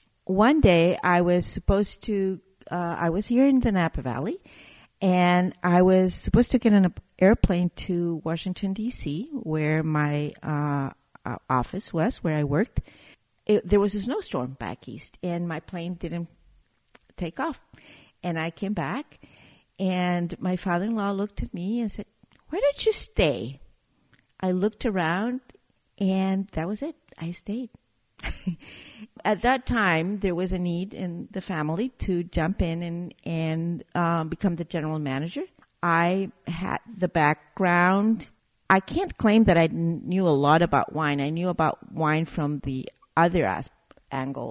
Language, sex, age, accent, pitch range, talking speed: English, female, 60-79, American, 155-195 Hz, 150 wpm